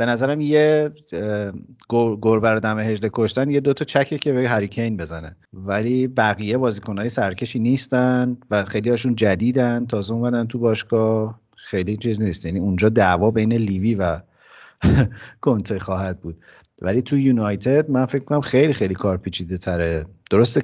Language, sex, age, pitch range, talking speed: Persian, male, 50-69, 95-115 Hz, 140 wpm